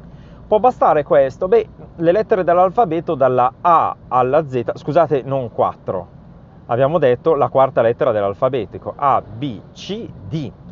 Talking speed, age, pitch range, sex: 135 wpm, 30-49, 125-160 Hz, male